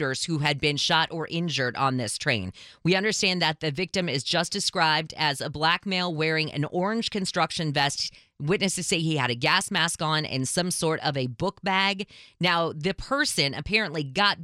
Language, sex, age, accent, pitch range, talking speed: English, female, 20-39, American, 140-180 Hz, 190 wpm